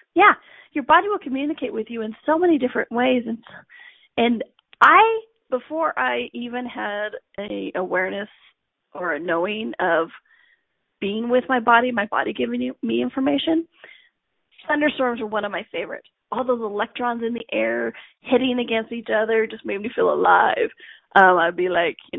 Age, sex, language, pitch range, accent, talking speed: 30-49, female, English, 210-300 Hz, American, 165 wpm